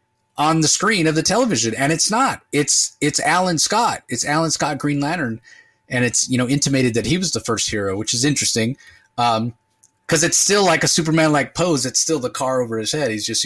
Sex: male